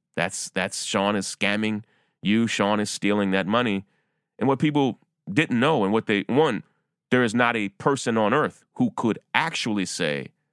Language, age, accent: English, 30-49, American